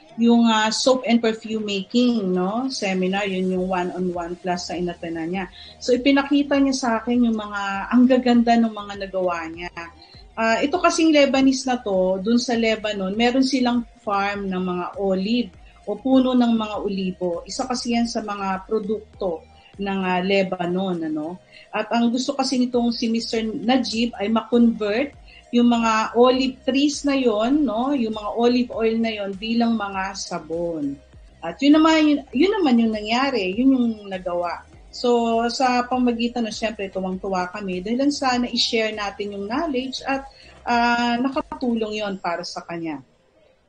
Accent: native